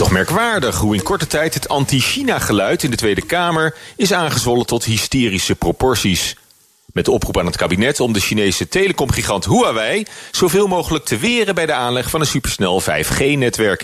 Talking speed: 170 wpm